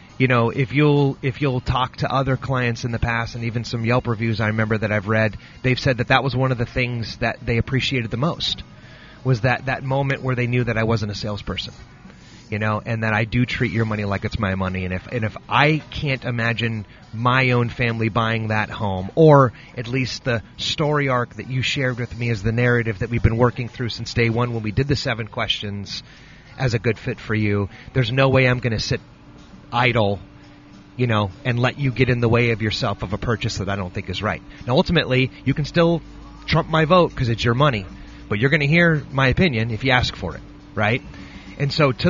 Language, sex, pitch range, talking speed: English, male, 110-135 Hz, 235 wpm